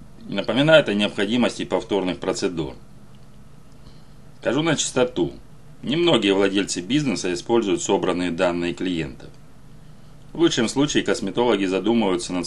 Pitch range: 90-135 Hz